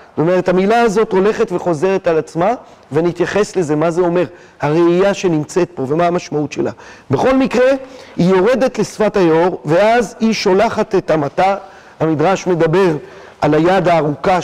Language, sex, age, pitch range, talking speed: Hebrew, male, 40-59, 170-230 Hz, 145 wpm